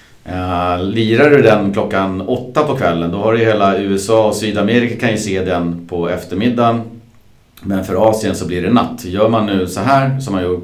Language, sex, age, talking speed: Swedish, male, 40-59, 195 wpm